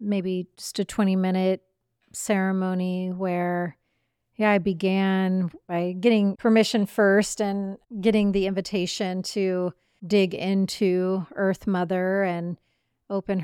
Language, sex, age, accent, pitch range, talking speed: English, female, 30-49, American, 175-195 Hz, 105 wpm